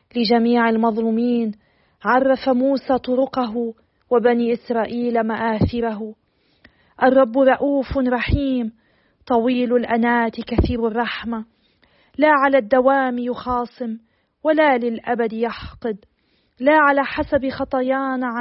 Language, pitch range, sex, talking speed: Arabic, 225-250 Hz, female, 85 wpm